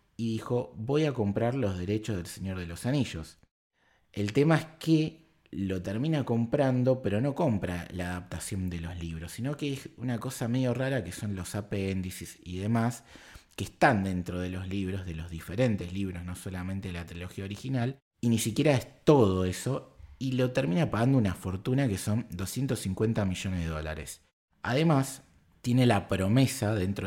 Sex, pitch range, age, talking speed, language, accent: male, 95-125 Hz, 20-39, 175 wpm, Spanish, Argentinian